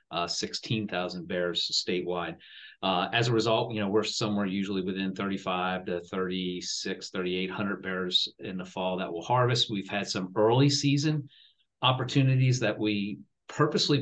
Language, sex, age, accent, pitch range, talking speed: English, male, 40-59, American, 90-105 Hz, 145 wpm